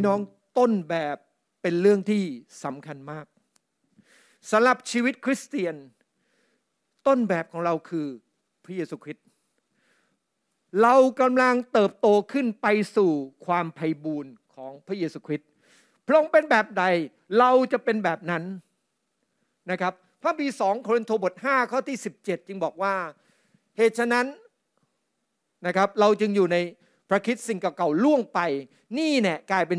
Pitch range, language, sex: 175-245 Hz, Thai, male